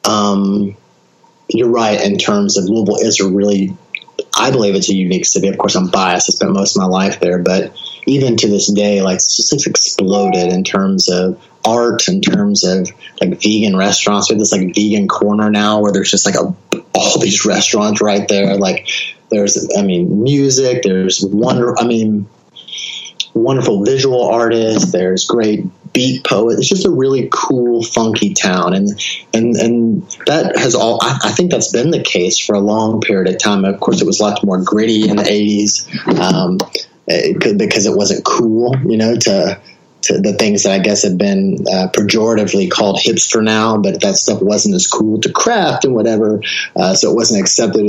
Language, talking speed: English, 195 wpm